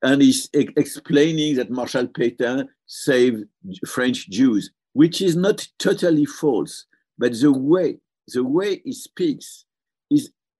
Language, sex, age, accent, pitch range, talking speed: English, male, 60-79, French, 125-190 Hz, 120 wpm